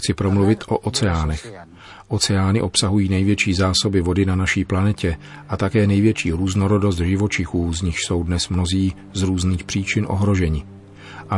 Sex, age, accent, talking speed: male, 40-59, native, 140 wpm